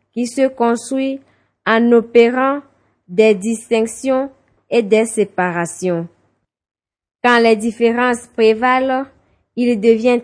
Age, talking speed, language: 20-39, 95 wpm, French